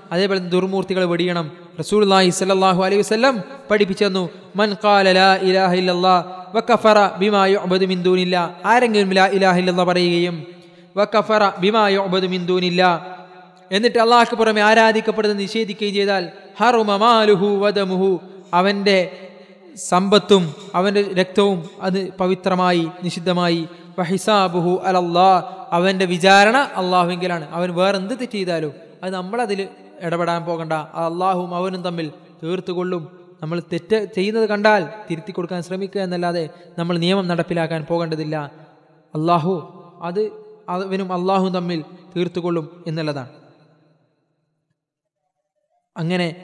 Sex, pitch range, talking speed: male, 175-195 Hz, 65 wpm